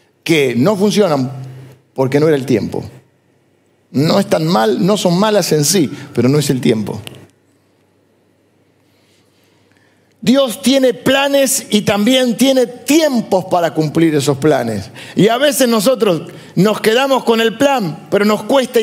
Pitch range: 140-215 Hz